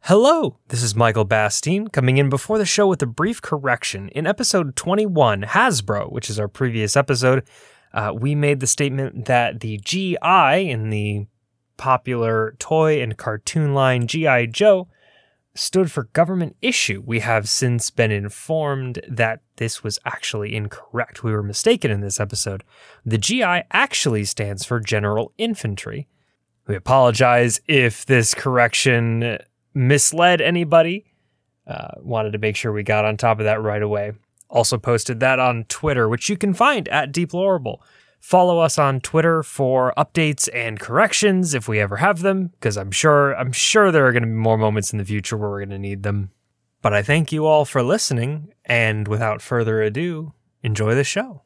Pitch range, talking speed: 110-155 Hz, 170 wpm